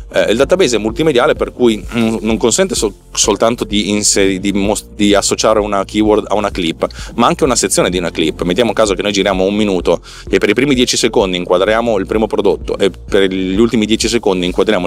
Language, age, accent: Italian, 30-49, native